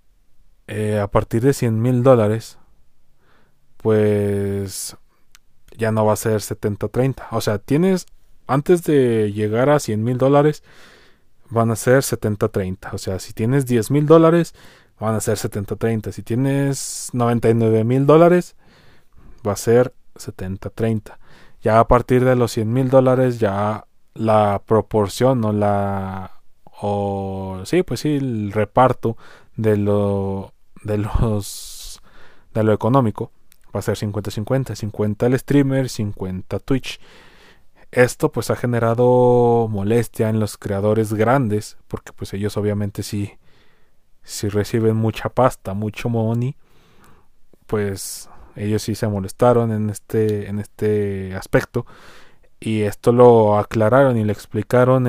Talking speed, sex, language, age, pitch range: 130 wpm, male, Spanish, 20-39, 105-125 Hz